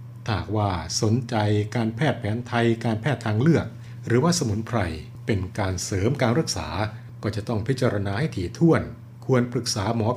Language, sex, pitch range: Thai, male, 110-125 Hz